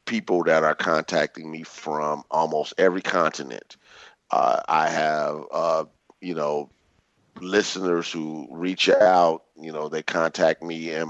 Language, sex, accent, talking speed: English, male, American, 135 wpm